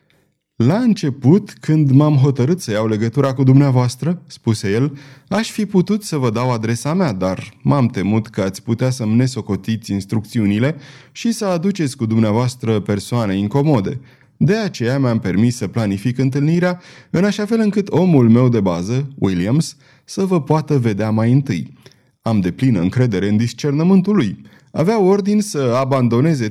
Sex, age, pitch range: male, 30-49, 110-165 Hz